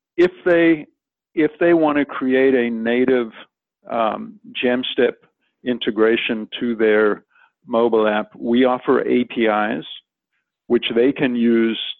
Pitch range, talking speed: 115-135 Hz, 115 wpm